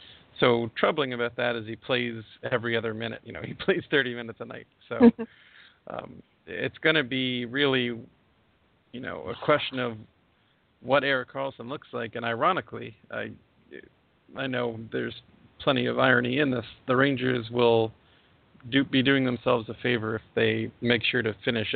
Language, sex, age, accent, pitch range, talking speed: English, male, 40-59, American, 115-125 Hz, 170 wpm